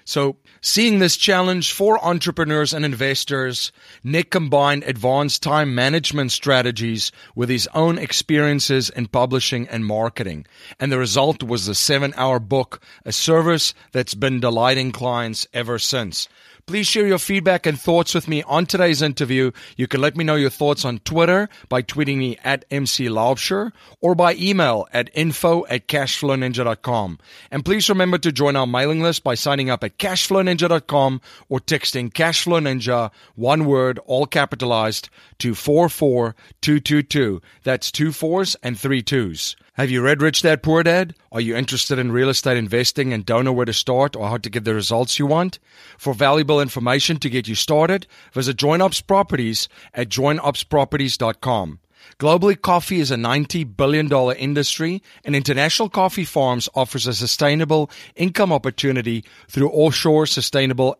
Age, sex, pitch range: 40-59, male, 125-155 Hz